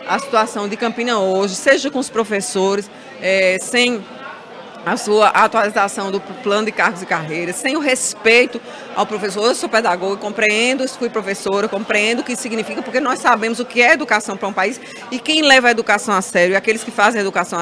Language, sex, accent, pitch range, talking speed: Portuguese, female, Brazilian, 210-255 Hz, 195 wpm